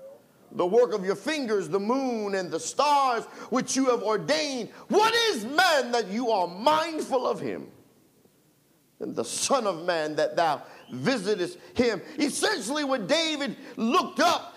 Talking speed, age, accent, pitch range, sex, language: 150 wpm, 50-69, American, 210-295 Hz, male, English